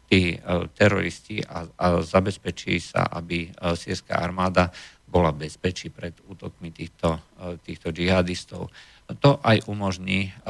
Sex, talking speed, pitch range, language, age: male, 110 wpm, 90-100 Hz, Slovak, 50-69